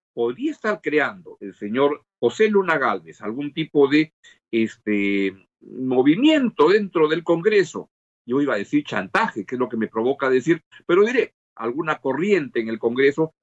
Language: Spanish